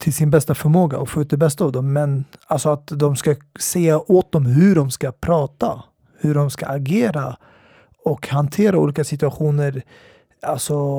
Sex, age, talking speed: male, 30-49, 175 wpm